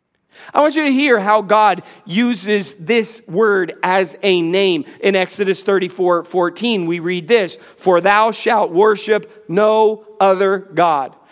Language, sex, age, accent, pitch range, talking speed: English, male, 40-59, American, 195-245 Hz, 145 wpm